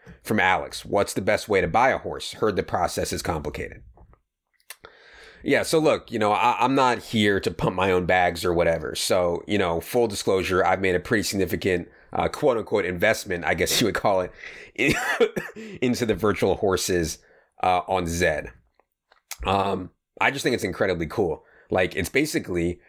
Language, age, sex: English, 30-49, male